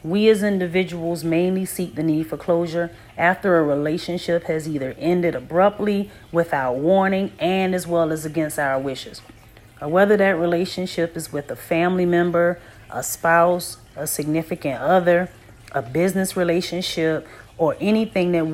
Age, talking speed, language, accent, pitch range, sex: 30-49, 140 wpm, English, American, 150-180 Hz, female